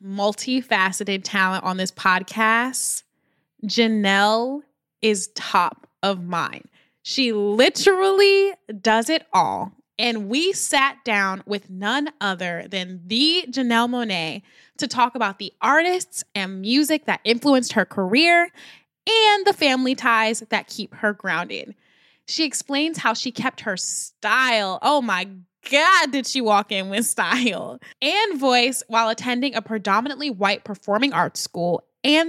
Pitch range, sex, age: 200-265 Hz, female, 10-29